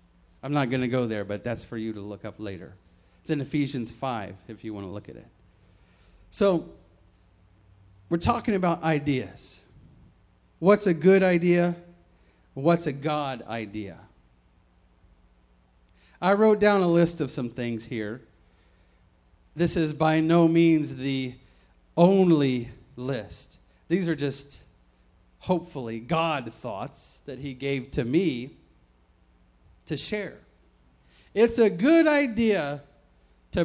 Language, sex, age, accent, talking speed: English, male, 40-59, American, 130 wpm